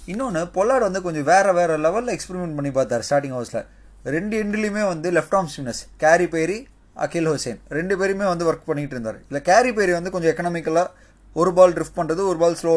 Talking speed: 195 wpm